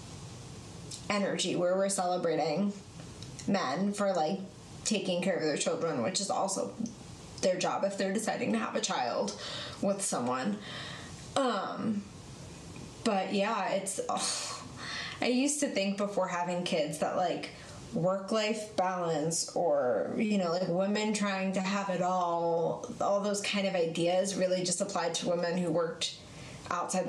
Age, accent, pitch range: 20-39, American, 175-205 Hz